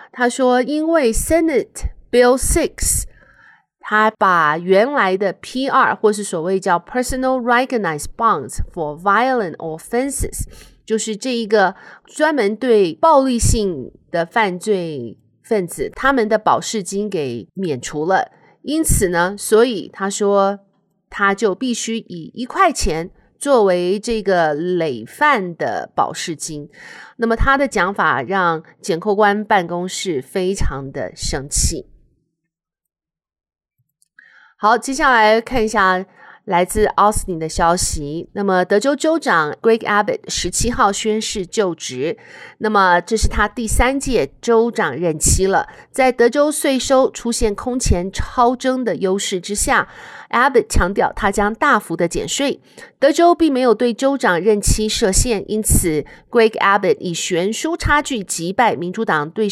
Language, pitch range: Chinese, 180-250 Hz